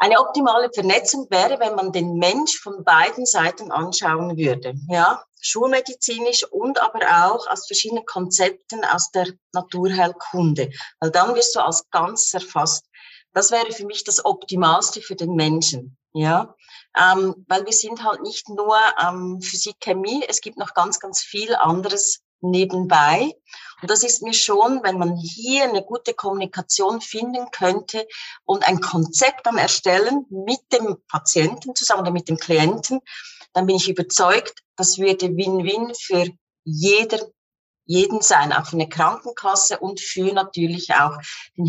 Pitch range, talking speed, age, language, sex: 175-230 Hz, 150 wpm, 40-59, German, female